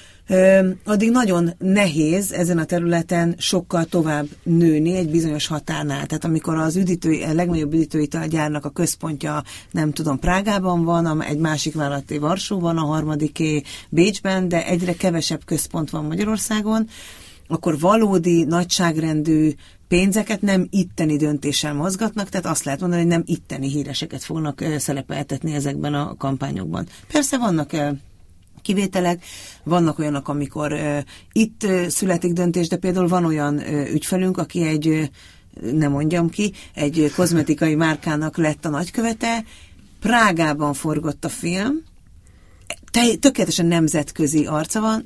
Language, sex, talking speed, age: Hungarian, female, 130 wpm, 40-59